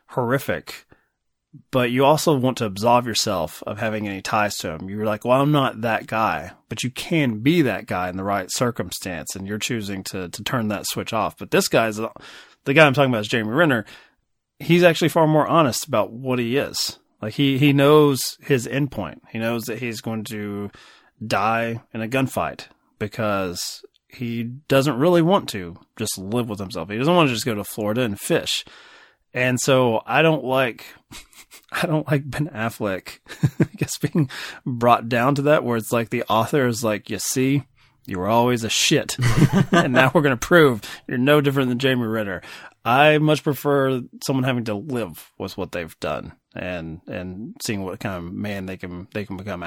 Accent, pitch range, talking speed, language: American, 105-140 Hz, 195 wpm, English